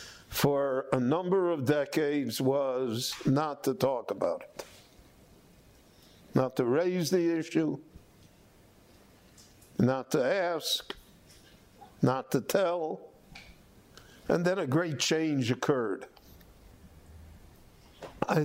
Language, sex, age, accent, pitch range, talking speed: English, male, 60-79, American, 100-150 Hz, 95 wpm